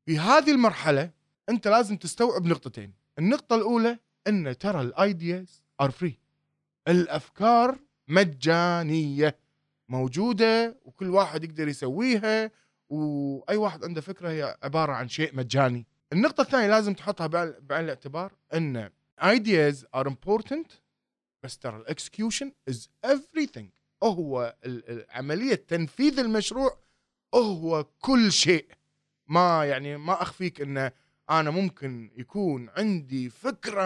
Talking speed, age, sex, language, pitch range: 110 wpm, 20-39, male, English, 140-205 Hz